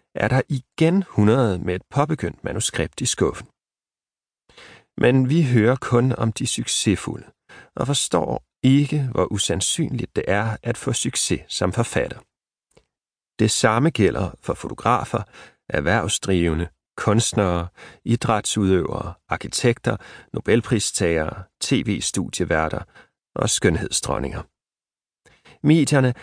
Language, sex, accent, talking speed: Danish, male, native, 100 wpm